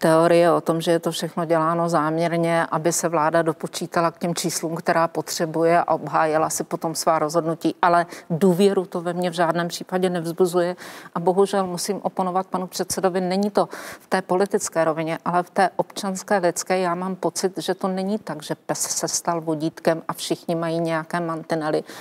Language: Czech